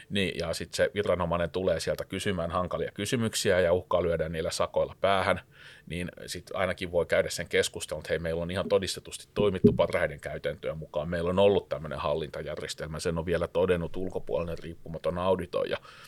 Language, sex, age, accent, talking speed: Finnish, male, 30-49, native, 165 wpm